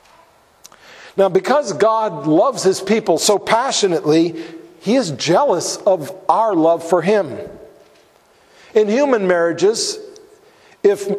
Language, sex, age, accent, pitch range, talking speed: English, male, 50-69, American, 185-225 Hz, 105 wpm